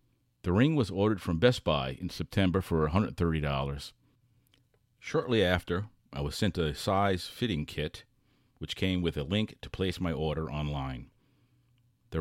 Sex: male